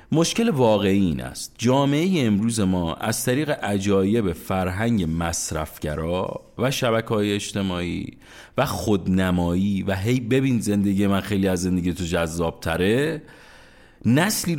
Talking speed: 115 wpm